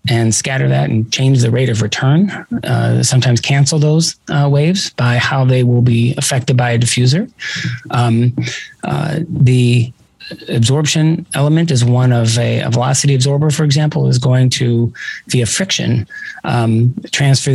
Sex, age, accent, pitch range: male, 30-49, American, 120-140 Hz